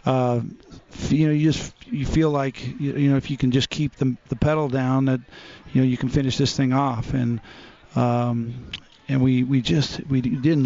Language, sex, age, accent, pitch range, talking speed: English, male, 40-59, American, 125-140 Hz, 205 wpm